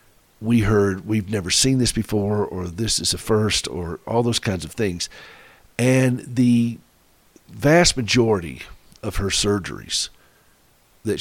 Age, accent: 50-69, American